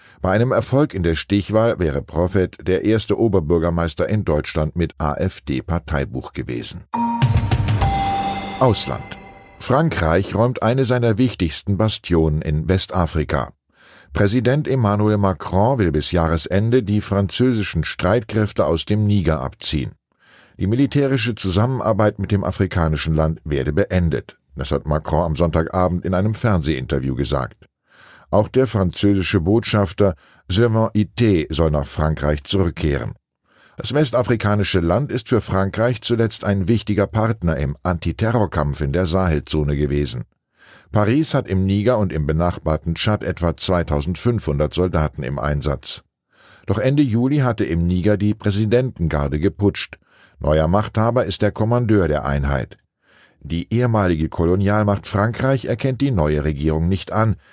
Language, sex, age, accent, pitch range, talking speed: German, male, 10-29, German, 80-110 Hz, 125 wpm